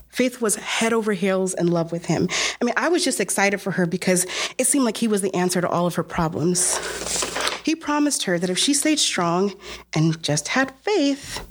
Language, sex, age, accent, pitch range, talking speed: English, female, 30-49, American, 165-210 Hz, 220 wpm